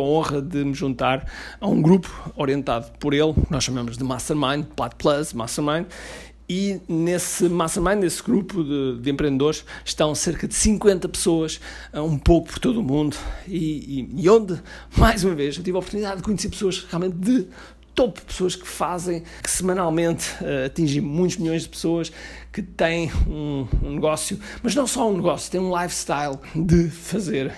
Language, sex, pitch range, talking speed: Portuguese, male, 140-180 Hz, 175 wpm